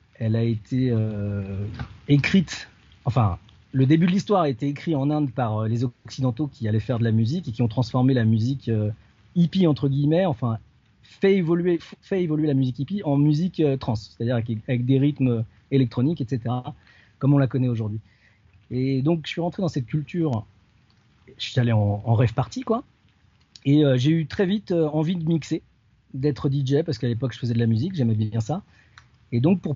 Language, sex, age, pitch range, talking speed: French, male, 40-59, 120-160 Hz, 205 wpm